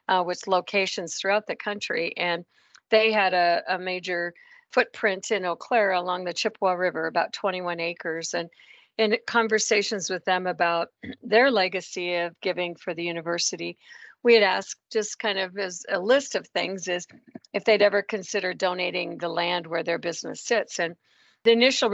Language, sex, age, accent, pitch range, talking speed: English, female, 50-69, American, 175-210 Hz, 170 wpm